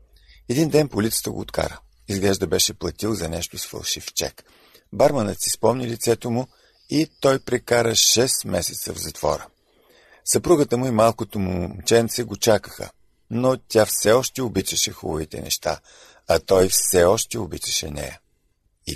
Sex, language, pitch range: male, Bulgarian, 85-115 Hz